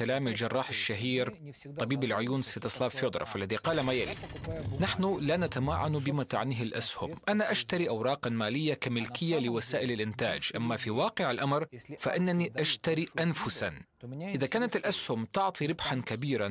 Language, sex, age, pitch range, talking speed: English, male, 30-49, 125-170 Hz, 135 wpm